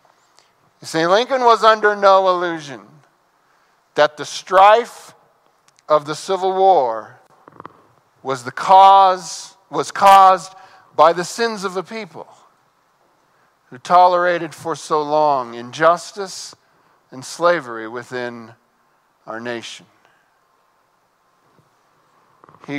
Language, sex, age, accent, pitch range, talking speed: English, male, 50-69, American, 150-200 Hz, 95 wpm